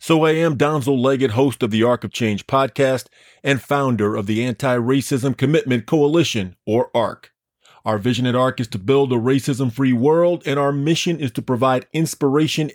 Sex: male